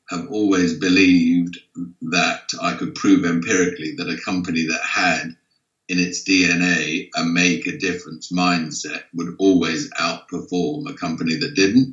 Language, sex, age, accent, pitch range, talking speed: English, male, 50-69, British, 85-95 Hz, 135 wpm